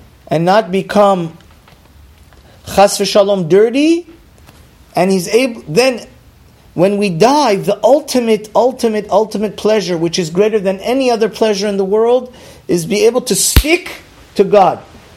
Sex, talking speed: male, 140 wpm